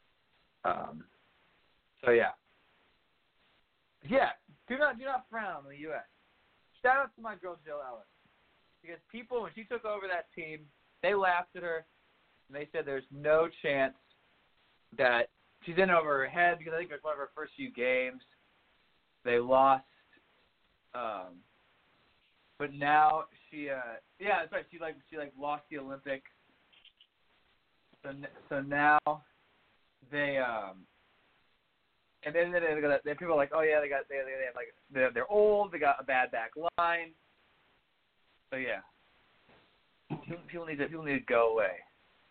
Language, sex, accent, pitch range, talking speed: English, male, American, 140-180 Hz, 160 wpm